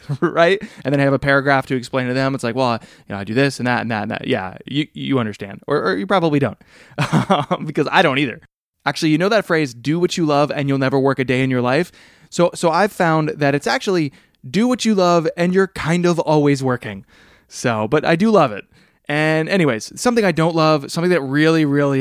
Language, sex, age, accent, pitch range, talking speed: English, male, 20-39, American, 130-170 Hz, 245 wpm